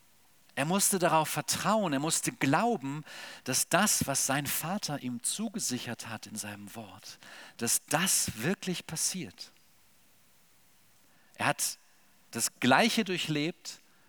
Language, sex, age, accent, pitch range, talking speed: German, male, 50-69, German, 110-175 Hz, 115 wpm